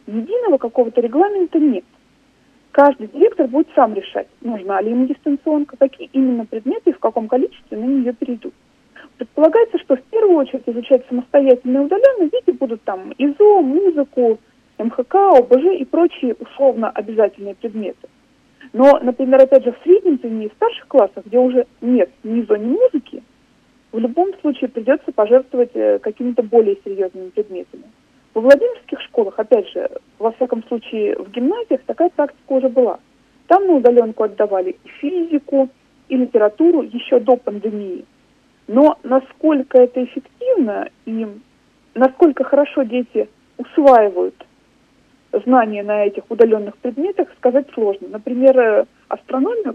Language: Russian